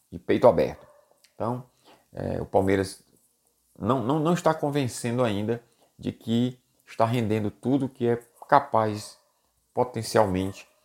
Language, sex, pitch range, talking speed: Portuguese, male, 100-125 Hz, 115 wpm